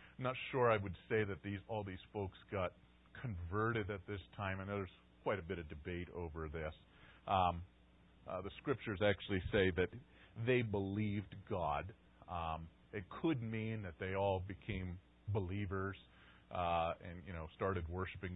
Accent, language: American, English